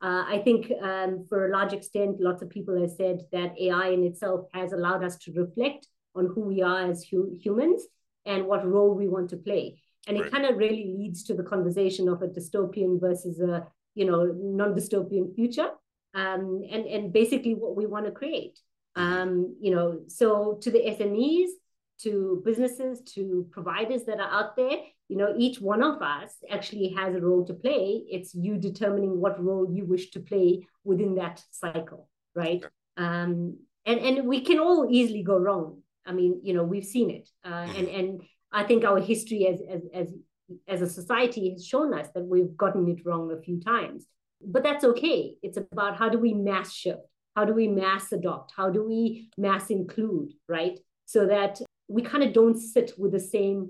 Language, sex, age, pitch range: English, female, 30-49, 180-220 Hz